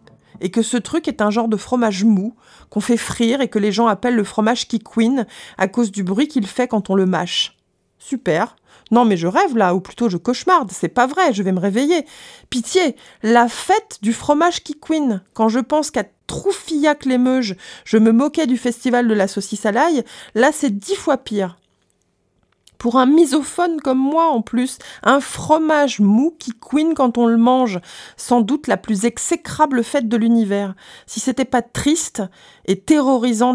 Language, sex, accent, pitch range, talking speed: French, female, French, 210-265 Hz, 190 wpm